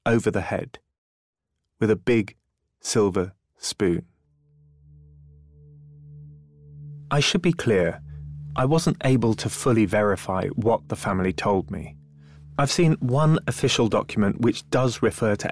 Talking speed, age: 125 wpm, 30-49